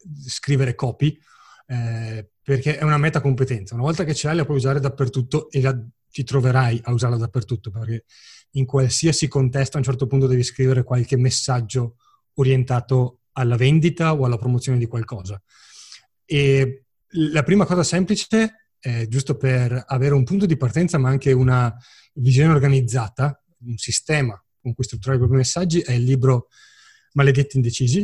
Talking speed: 160 wpm